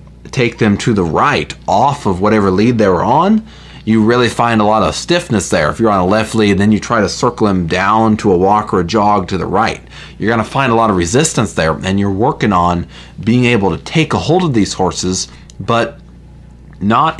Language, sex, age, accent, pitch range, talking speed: English, male, 30-49, American, 95-115 Hz, 230 wpm